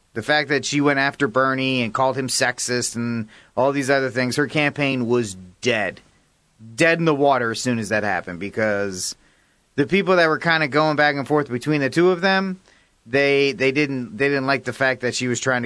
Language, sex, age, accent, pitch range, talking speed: English, male, 40-59, American, 115-145 Hz, 220 wpm